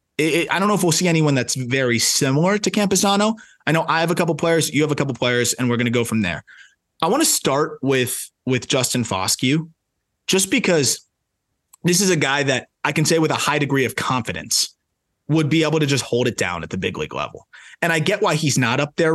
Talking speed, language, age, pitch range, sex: 245 wpm, English, 20-39, 120-160 Hz, male